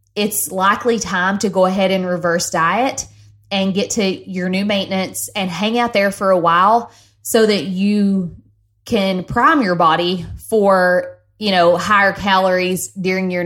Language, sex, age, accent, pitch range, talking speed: English, female, 20-39, American, 170-200 Hz, 160 wpm